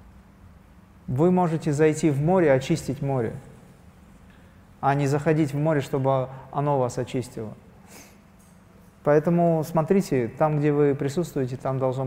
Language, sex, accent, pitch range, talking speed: Russian, male, native, 130-160 Hz, 120 wpm